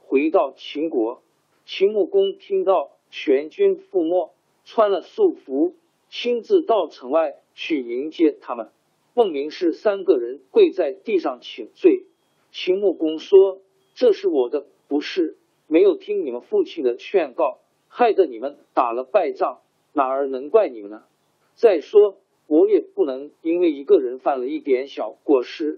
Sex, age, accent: male, 50-69, native